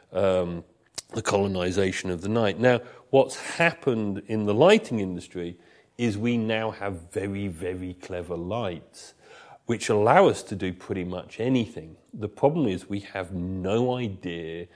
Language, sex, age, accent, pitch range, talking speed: English, male, 40-59, British, 95-115 Hz, 145 wpm